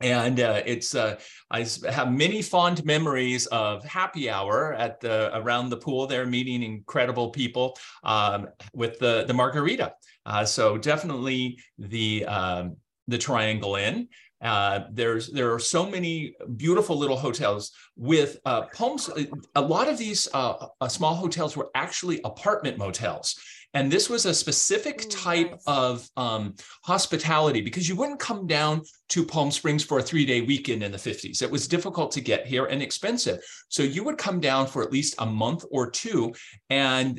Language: English